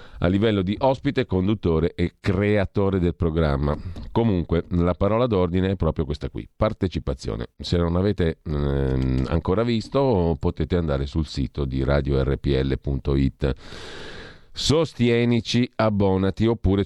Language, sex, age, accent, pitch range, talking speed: Italian, male, 40-59, native, 80-100 Hz, 115 wpm